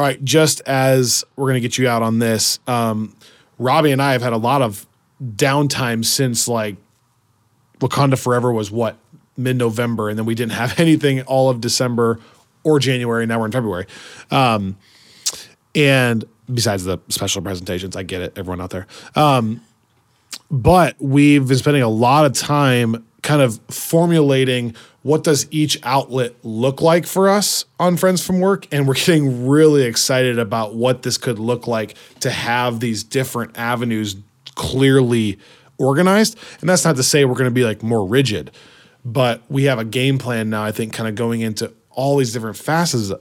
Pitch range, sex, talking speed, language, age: 115-140 Hz, male, 175 wpm, English, 20-39